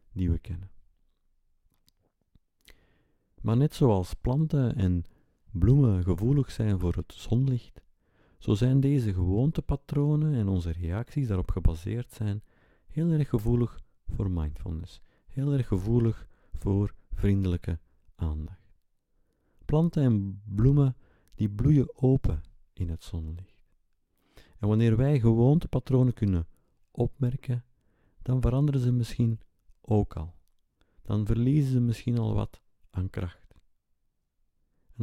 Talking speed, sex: 110 wpm, male